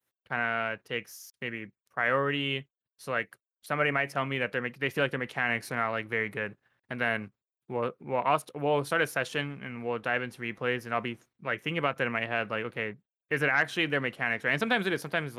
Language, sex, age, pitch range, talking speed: English, male, 20-39, 115-140 Hz, 250 wpm